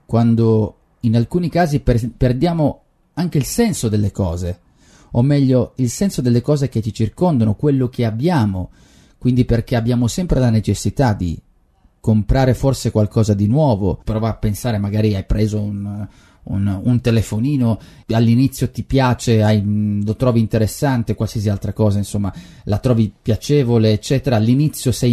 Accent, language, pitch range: native, Italian, 105-130 Hz